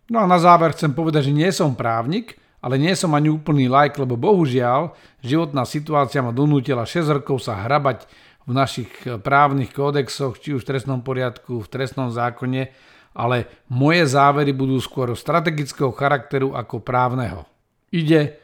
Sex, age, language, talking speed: male, 50-69, Slovak, 165 wpm